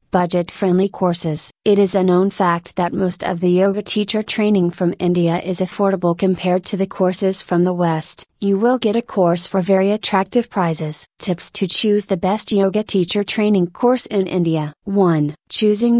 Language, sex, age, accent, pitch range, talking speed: English, female, 30-49, American, 170-200 Hz, 180 wpm